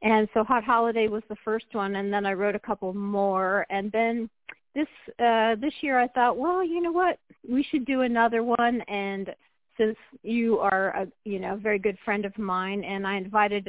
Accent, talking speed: American, 205 wpm